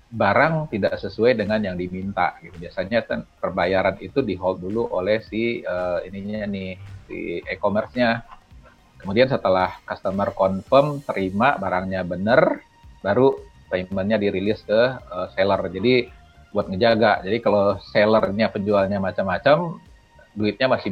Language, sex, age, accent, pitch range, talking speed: English, male, 40-59, Indonesian, 95-115 Hz, 125 wpm